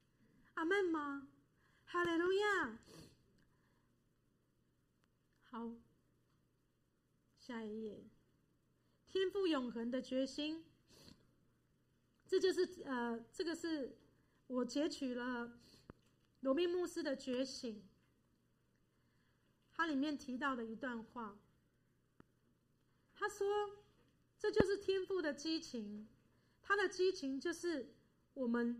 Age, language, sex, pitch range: 30-49, Chinese, female, 240-345 Hz